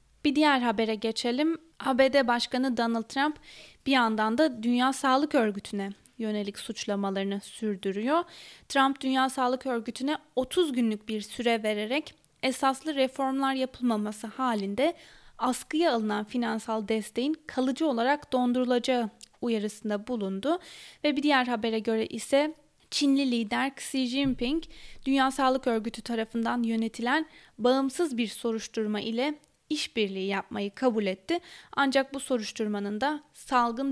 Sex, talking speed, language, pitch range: female, 120 wpm, Turkish, 220-275 Hz